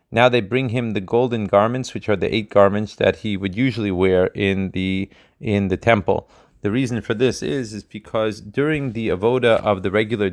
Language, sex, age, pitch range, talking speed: Hebrew, male, 30-49, 95-115 Hz, 205 wpm